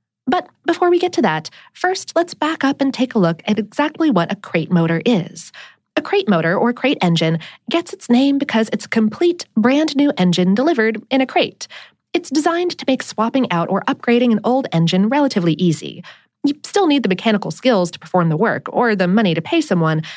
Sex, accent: female, American